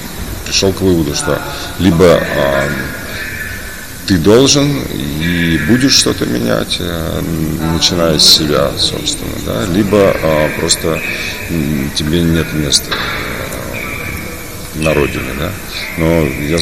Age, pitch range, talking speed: 40-59, 80-100 Hz, 110 wpm